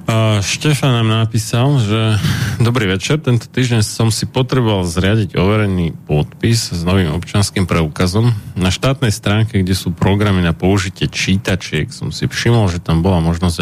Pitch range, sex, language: 90-115 Hz, male, Slovak